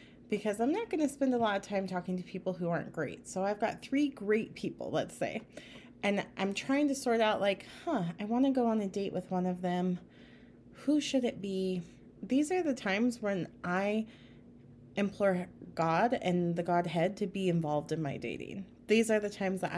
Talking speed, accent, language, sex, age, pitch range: 210 wpm, American, English, female, 30-49, 180-230 Hz